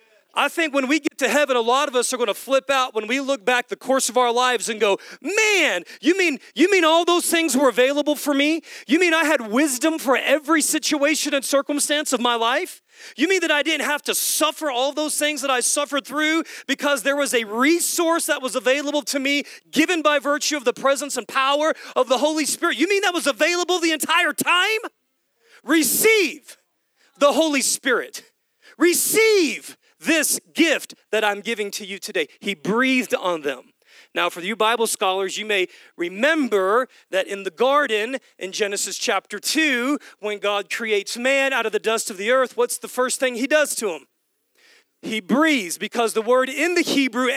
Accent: American